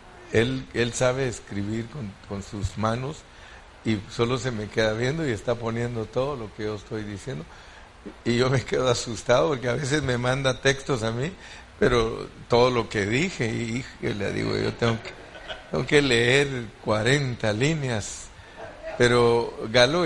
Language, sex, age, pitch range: Spanish, male, 60-79, 110-140 Hz